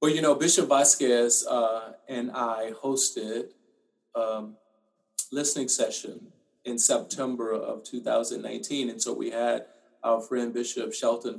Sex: male